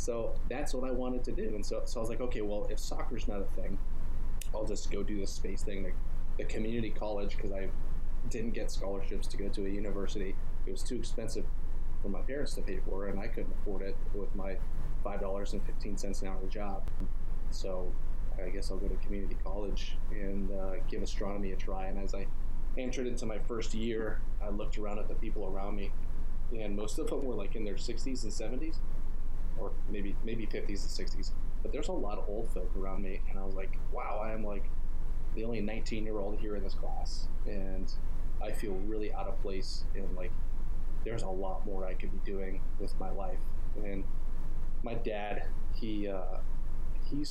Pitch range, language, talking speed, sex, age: 80-105 Hz, English, 200 wpm, male, 30-49